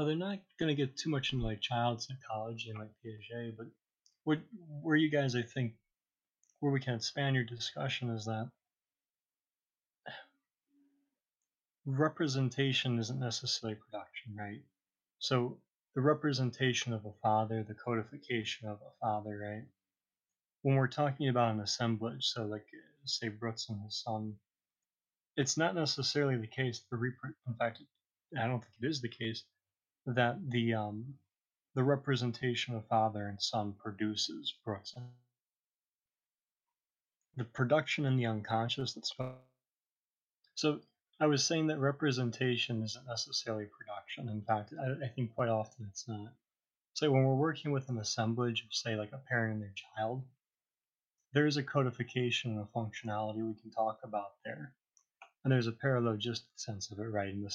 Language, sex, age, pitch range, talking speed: English, male, 30-49, 110-135 Hz, 155 wpm